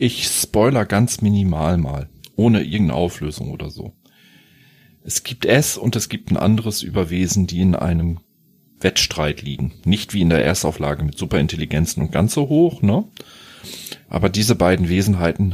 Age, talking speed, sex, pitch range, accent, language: 40-59, 155 wpm, male, 80-95 Hz, German, German